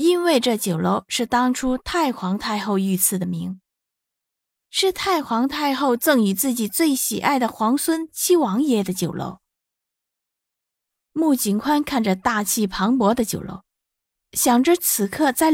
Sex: female